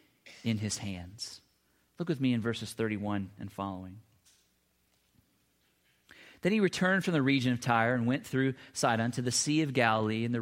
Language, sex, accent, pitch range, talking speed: English, male, American, 110-150 Hz, 175 wpm